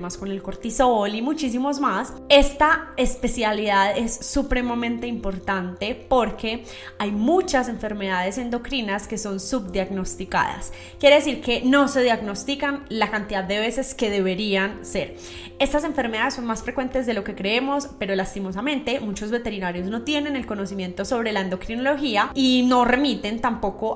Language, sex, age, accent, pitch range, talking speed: Spanish, female, 20-39, Colombian, 200-255 Hz, 145 wpm